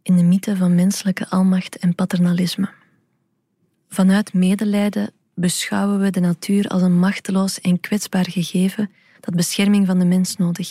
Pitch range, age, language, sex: 180-200 Hz, 20-39, Dutch, female